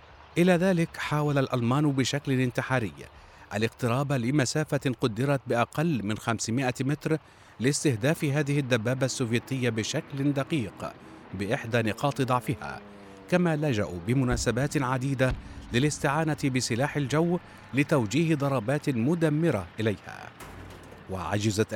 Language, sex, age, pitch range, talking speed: Arabic, male, 50-69, 115-145 Hz, 95 wpm